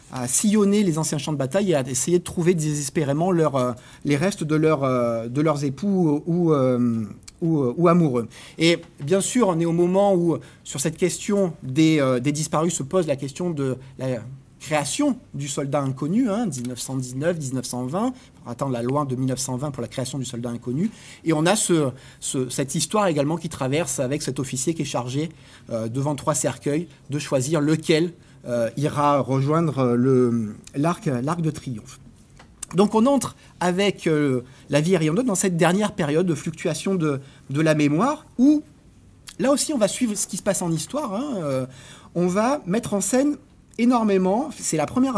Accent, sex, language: French, male, French